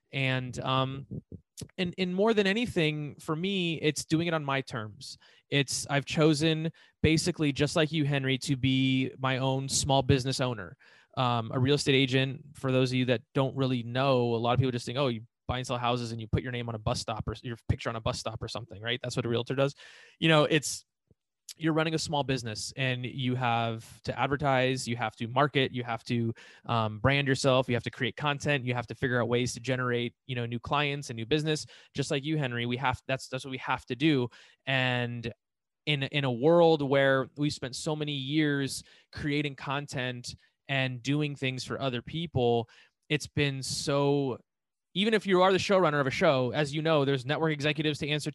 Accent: American